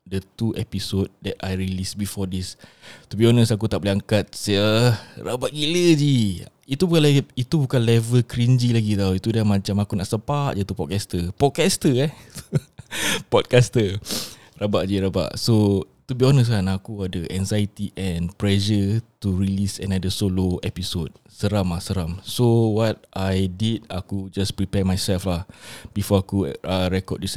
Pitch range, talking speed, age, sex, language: 95-115 Hz, 160 wpm, 20-39, male, Malay